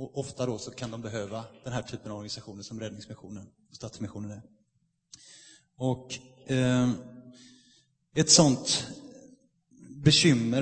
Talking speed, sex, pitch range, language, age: 125 wpm, male, 120-140 Hz, Swedish, 30-49